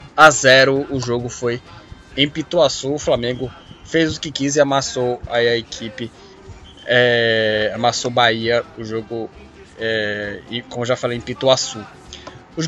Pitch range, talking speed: 120-155 Hz, 145 wpm